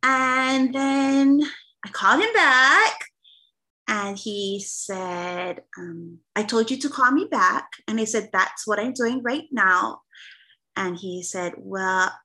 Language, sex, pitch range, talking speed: English, female, 185-265 Hz, 145 wpm